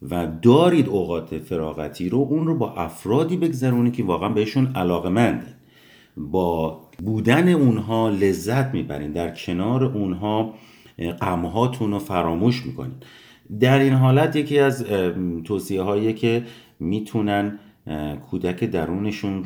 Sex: male